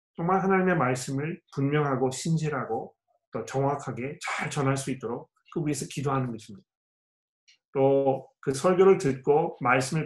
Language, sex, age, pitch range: Korean, male, 30-49, 125-160 Hz